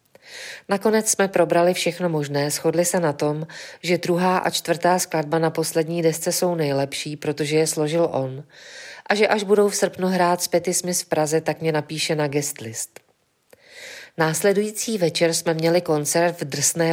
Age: 40-59